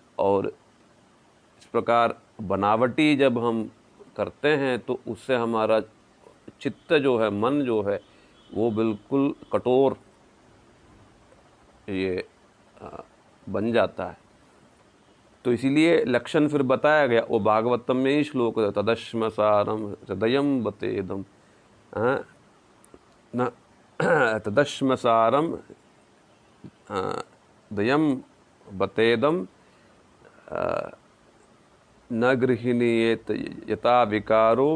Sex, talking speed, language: male, 80 wpm, Hindi